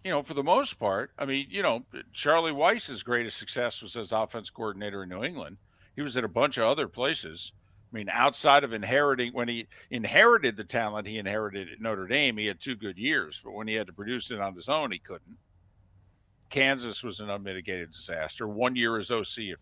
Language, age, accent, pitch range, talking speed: English, 50-69, American, 95-120 Hz, 215 wpm